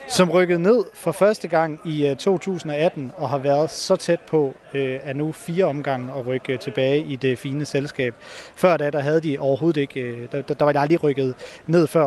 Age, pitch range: 30-49, 140-175 Hz